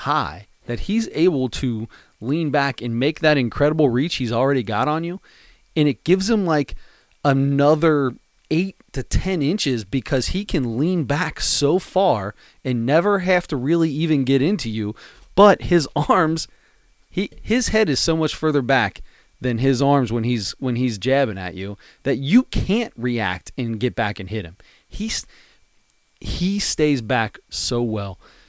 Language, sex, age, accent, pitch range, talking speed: English, male, 30-49, American, 115-150 Hz, 170 wpm